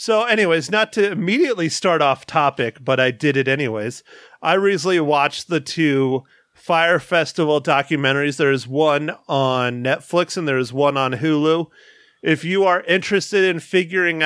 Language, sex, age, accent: English, male, 30-49, American